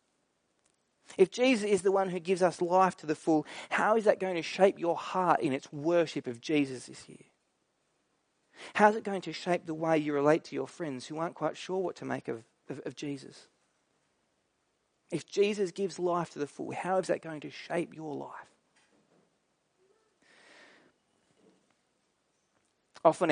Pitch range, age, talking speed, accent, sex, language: 140-185 Hz, 30-49, 170 wpm, Australian, male, English